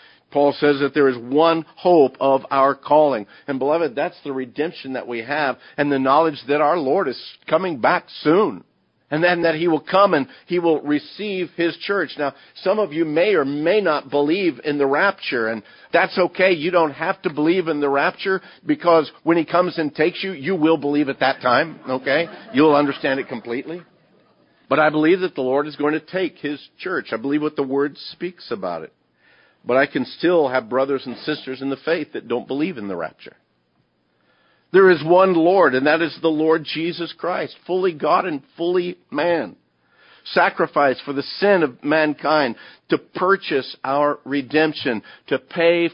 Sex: male